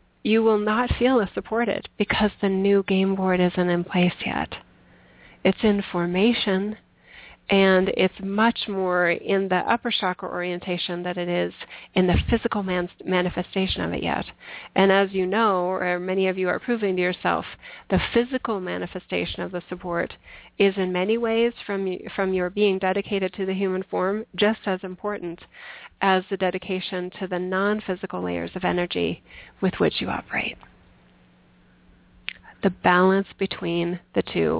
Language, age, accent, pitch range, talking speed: English, 40-59, American, 175-200 Hz, 155 wpm